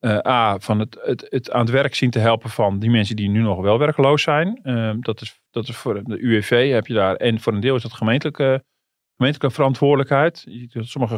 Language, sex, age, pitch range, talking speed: Dutch, male, 40-59, 110-135 Hz, 225 wpm